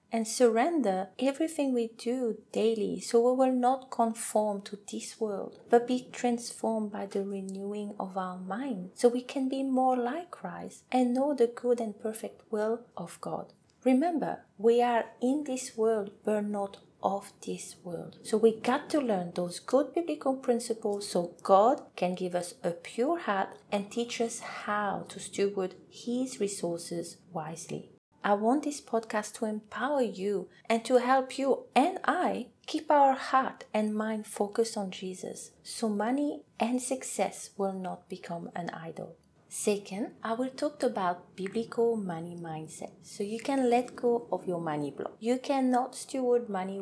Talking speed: 165 wpm